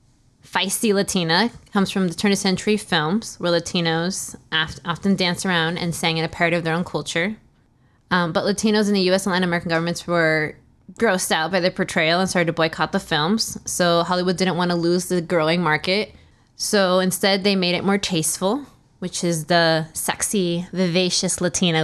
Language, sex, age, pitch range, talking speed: English, female, 20-39, 165-195 Hz, 190 wpm